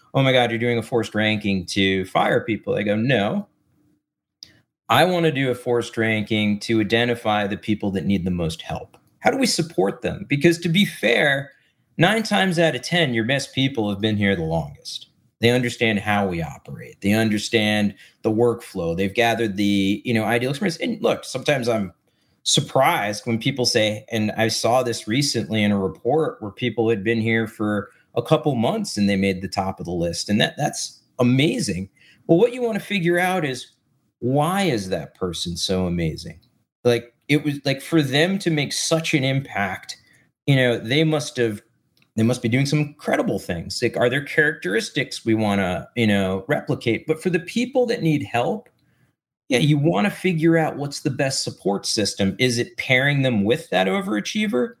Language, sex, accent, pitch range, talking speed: English, male, American, 105-150 Hz, 195 wpm